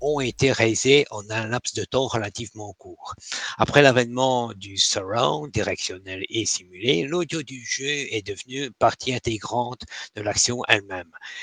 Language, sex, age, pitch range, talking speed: French, male, 60-79, 105-135 Hz, 140 wpm